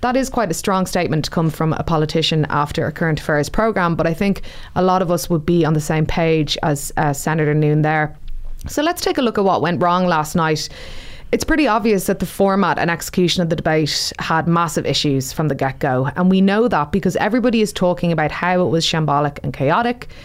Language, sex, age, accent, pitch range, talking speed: English, female, 20-39, Irish, 150-185 Hz, 230 wpm